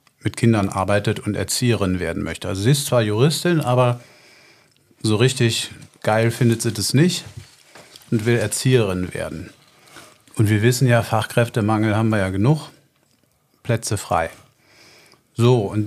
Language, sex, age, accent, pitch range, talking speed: German, male, 40-59, German, 110-140 Hz, 140 wpm